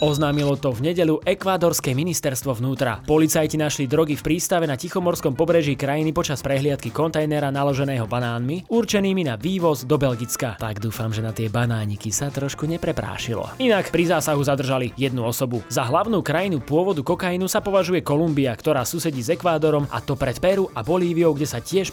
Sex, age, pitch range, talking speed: male, 20-39, 140-175 Hz, 170 wpm